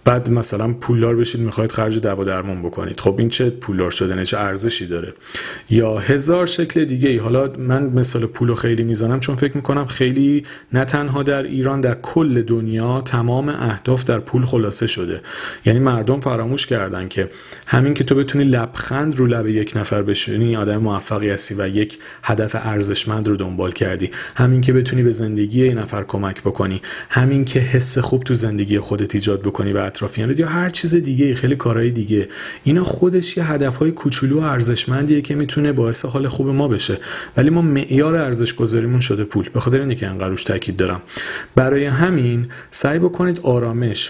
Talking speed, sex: 180 wpm, male